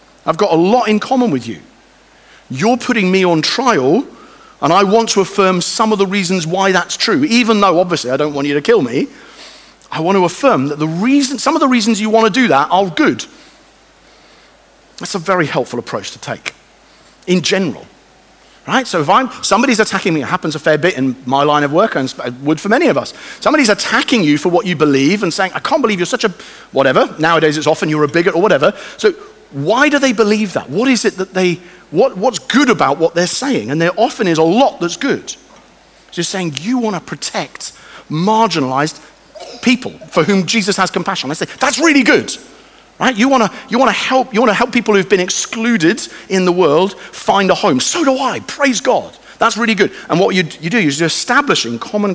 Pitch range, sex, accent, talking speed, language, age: 165-240 Hz, male, British, 220 wpm, English, 40-59